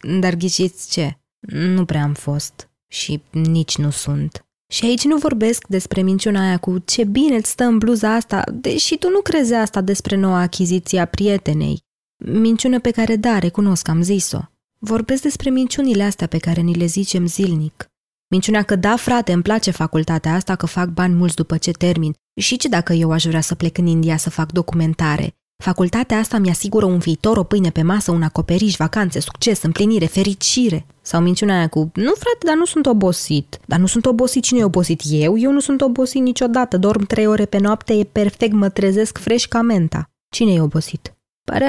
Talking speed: 195 wpm